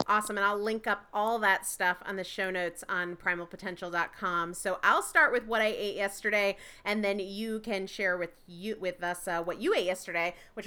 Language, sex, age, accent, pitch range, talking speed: English, female, 30-49, American, 180-220 Hz, 210 wpm